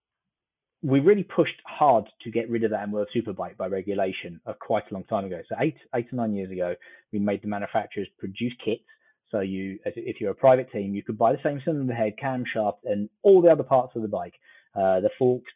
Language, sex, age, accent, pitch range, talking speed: English, male, 30-49, British, 100-130 Hz, 225 wpm